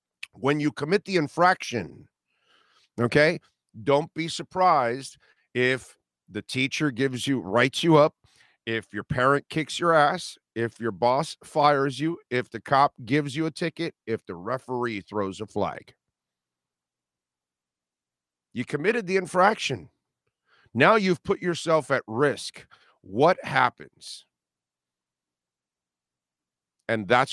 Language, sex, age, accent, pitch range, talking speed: English, male, 50-69, American, 90-150 Hz, 120 wpm